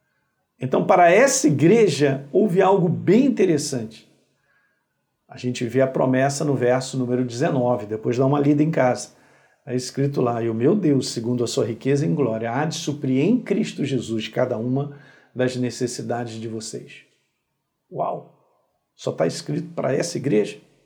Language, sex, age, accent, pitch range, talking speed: Portuguese, male, 50-69, Brazilian, 125-195 Hz, 160 wpm